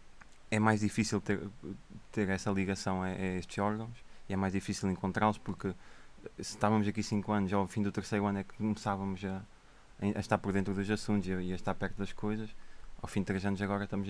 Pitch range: 95-105 Hz